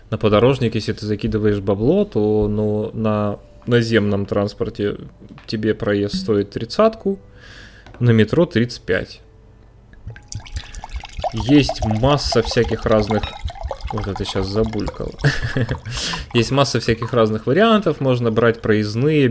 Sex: male